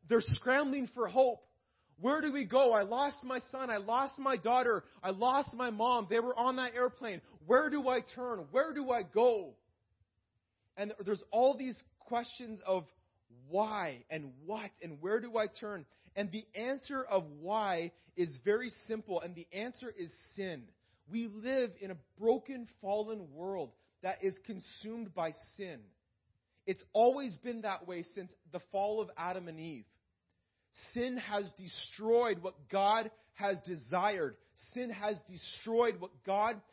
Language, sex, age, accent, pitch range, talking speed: English, male, 30-49, American, 170-240 Hz, 155 wpm